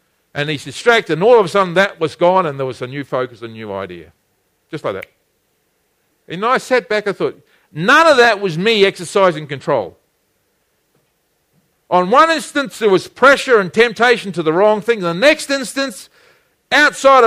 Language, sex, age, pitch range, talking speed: English, male, 50-69, 155-235 Hz, 180 wpm